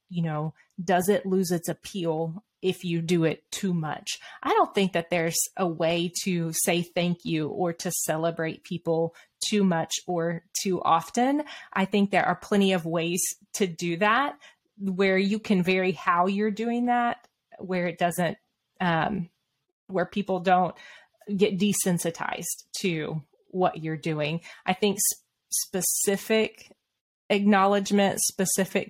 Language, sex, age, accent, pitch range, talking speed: English, female, 30-49, American, 170-205 Hz, 145 wpm